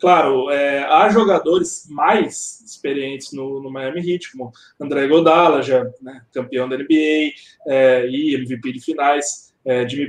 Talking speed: 150 wpm